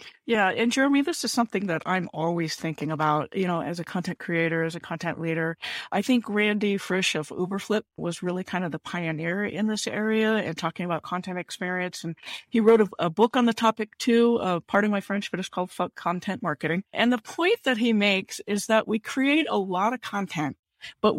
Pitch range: 170-225 Hz